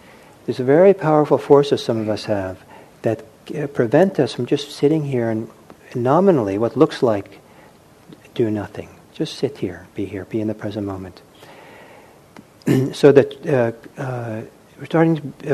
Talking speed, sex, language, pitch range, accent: 160 wpm, male, English, 110-145 Hz, American